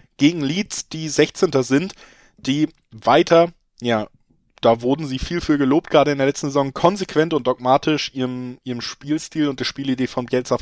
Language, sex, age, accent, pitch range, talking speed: German, male, 20-39, German, 120-140 Hz, 170 wpm